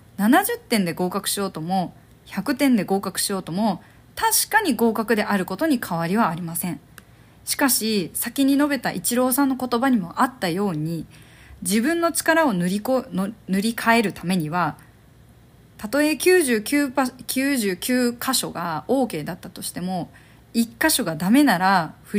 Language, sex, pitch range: Japanese, female, 180-260 Hz